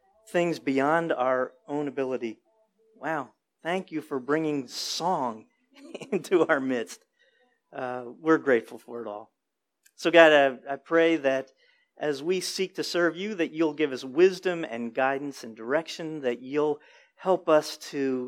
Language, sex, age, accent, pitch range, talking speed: English, male, 40-59, American, 120-160 Hz, 150 wpm